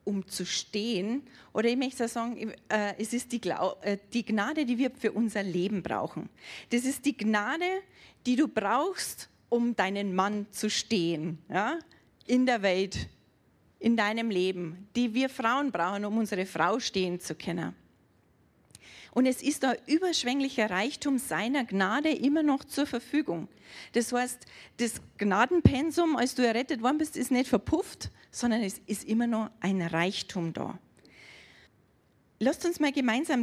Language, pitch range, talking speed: German, 205-270 Hz, 145 wpm